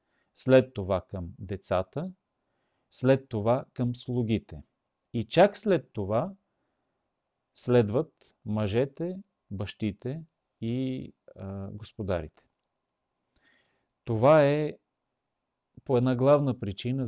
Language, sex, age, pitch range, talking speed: Bulgarian, male, 40-59, 105-130 Hz, 85 wpm